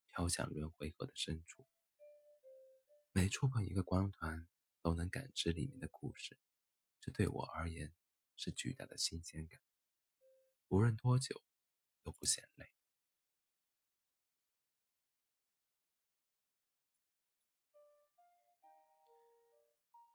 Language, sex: Chinese, male